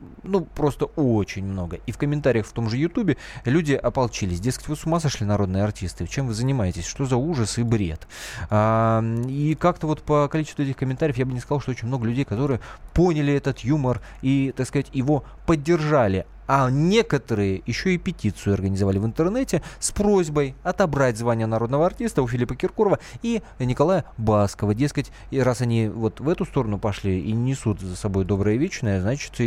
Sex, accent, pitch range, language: male, native, 110-150 Hz, Russian